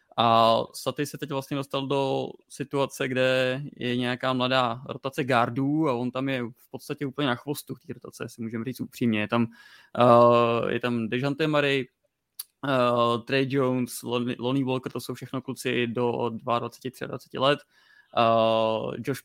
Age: 20-39